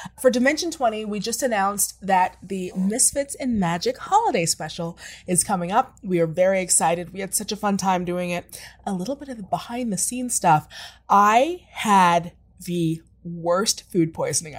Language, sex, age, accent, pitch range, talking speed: English, female, 20-39, American, 180-255 Hz, 175 wpm